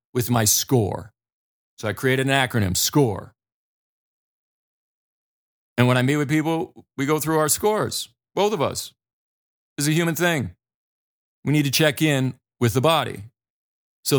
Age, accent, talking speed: 40-59, American, 150 wpm